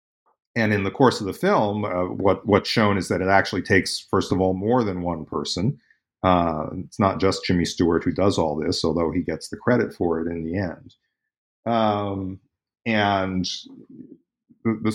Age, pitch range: 40-59, 90-110 Hz